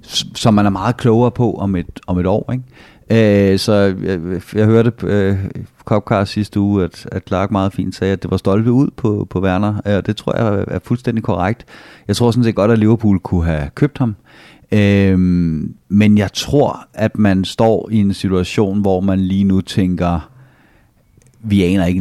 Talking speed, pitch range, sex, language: 195 wpm, 90-110 Hz, male, Danish